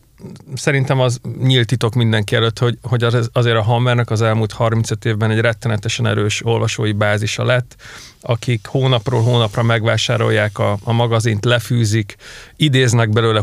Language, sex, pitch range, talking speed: Hungarian, male, 110-125 Hz, 140 wpm